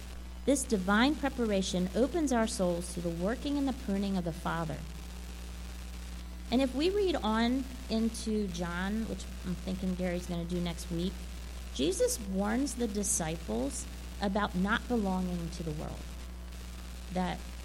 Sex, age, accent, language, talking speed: female, 40-59, American, English, 145 wpm